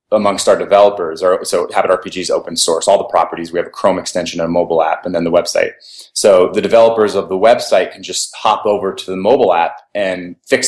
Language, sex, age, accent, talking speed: English, male, 30-49, American, 230 wpm